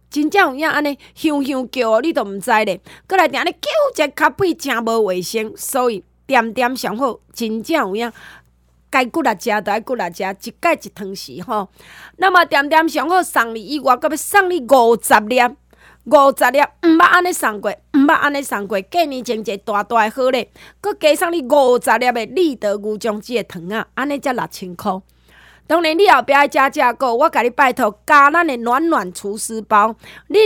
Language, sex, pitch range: Chinese, female, 225-315 Hz